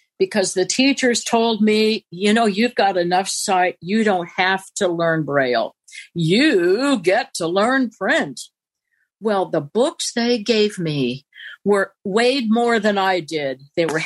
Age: 60-79